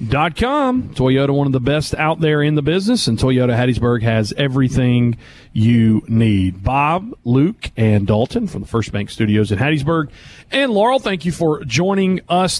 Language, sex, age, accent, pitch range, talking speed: English, male, 40-59, American, 135-185 Hz, 175 wpm